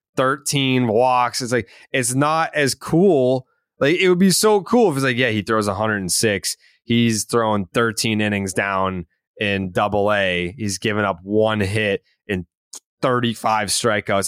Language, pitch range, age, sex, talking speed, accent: English, 100-150 Hz, 20-39, male, 155 wpm, American